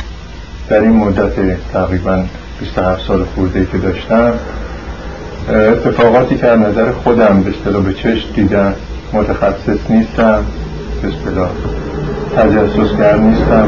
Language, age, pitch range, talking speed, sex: Persian, 50-69, 85-115 Hz, 100 wpm, male